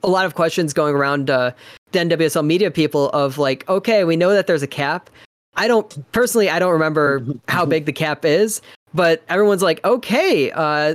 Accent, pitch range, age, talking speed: American, 145-180 Hz, 20-39, 195 wpm